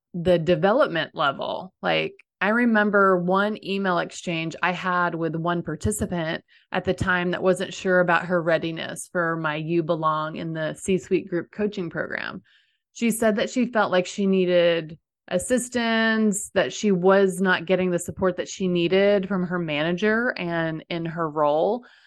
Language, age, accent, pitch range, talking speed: English, 30-49, American, 175-205 Hz, 165 wpm